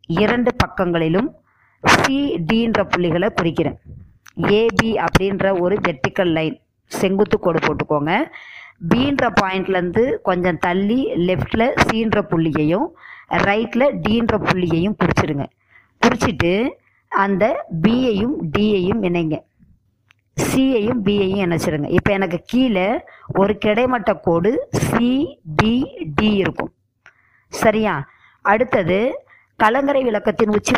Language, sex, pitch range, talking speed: Tamil, male, 175-225 Hz, 90 wpm